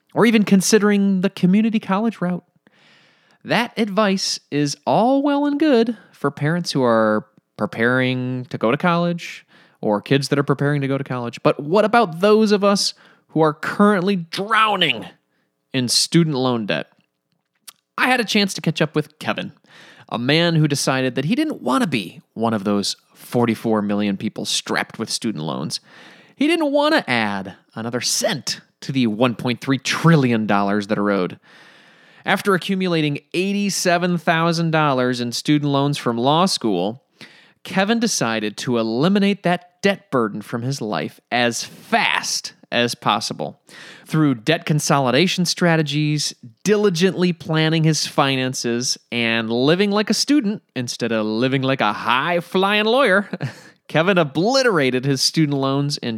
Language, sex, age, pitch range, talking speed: English, male, 20-39, 125-195 Hz, 145 wpm